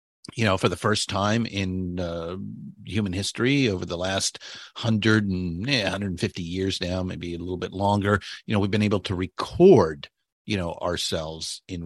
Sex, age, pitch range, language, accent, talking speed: male, 50-69, 95-115 Hz, English, American, 175 wpm